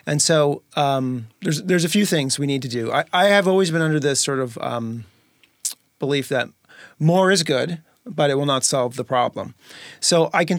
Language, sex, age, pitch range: English, male, 30-49, 125-150 Hz